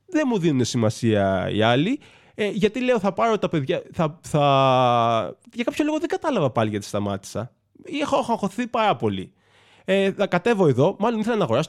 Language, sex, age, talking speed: Greek, male, 20-39, 160 wpm